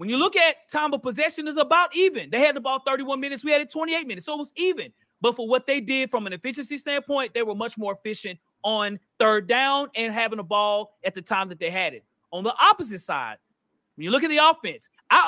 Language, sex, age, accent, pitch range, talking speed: English, male, 30-49, American, 220-280 Hz, 250 wpm